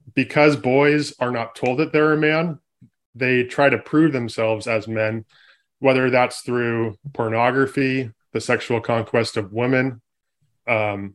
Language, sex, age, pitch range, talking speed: English, male, 20-39, 115-135 Hz, 140 wpm